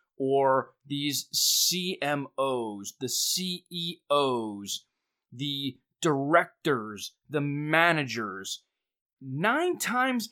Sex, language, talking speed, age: male, English, 65 wpm, 30-49